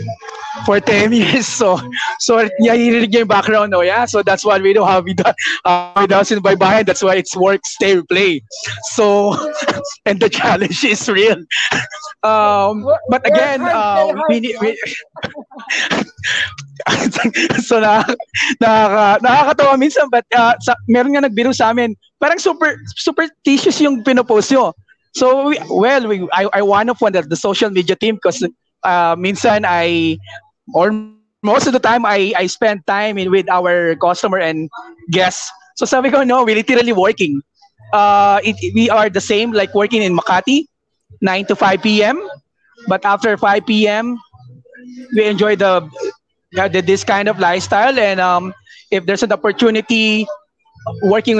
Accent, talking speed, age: Filipino, 150 wpm, 20-39